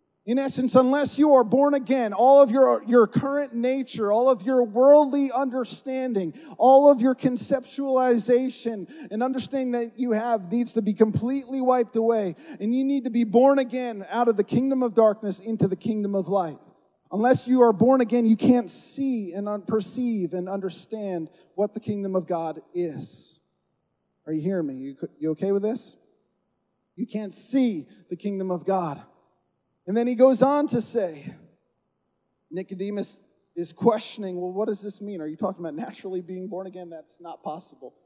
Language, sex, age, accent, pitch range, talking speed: English, male, 30-49, American, 185-250 Hz, 175 wpm